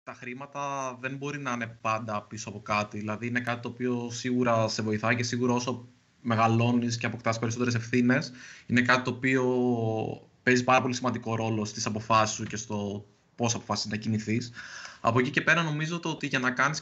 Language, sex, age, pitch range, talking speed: Greek, male, 20-39, 115-140 Hz, 195 wpm